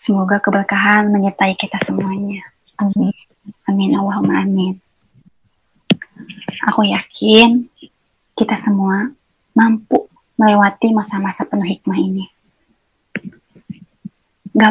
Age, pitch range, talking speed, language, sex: 20-39, 195-225 Hz, 80 wpm, Indonesian, female